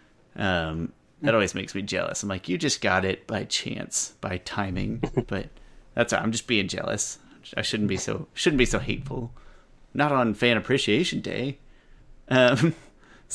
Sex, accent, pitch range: male, American, 105-125 Hz